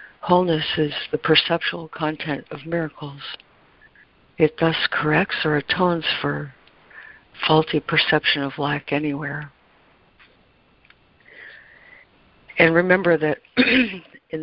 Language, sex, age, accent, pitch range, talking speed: English, female, 60-79, American, 150-170 Hz, 90 wpm